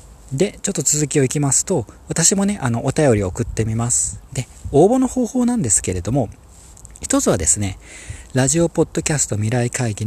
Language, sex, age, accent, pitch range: Japanese, male, 40-59, native, 105-160 Hz